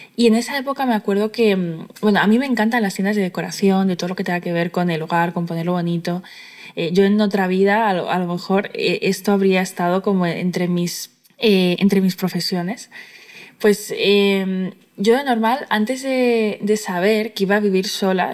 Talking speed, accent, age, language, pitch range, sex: 210 wpm, Spanish, 20-39, Spanish, 185-220 Hz, female